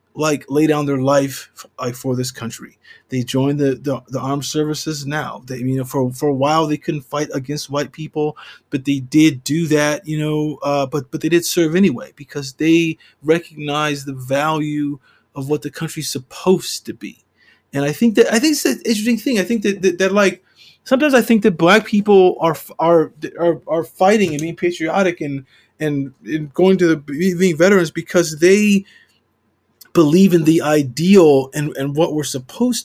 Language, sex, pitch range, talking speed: English, male, 145-195 Hz, 190 wpm